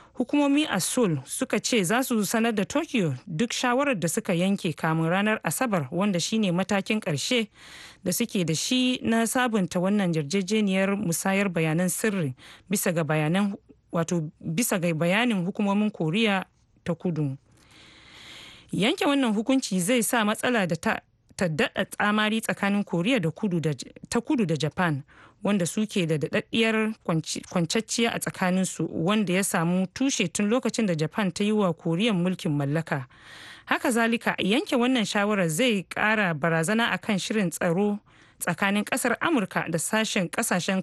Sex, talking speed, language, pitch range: female, 155 wpm, English, 175-230 Hz